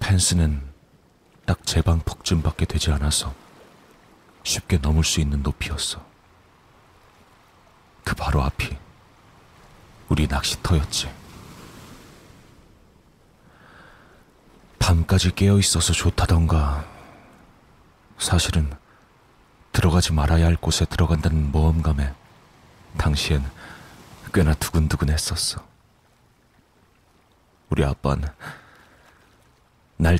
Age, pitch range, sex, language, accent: 40-59, 75-90 Hz, male, Korean, native